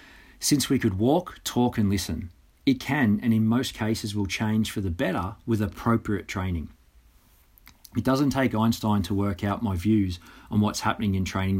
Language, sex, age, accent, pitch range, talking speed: English, male, 40-59, Australian, 90-115 Hz, 180 wpm